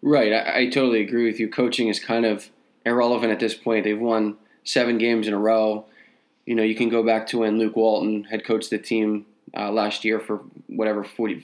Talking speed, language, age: 220 wpm, English, 20-39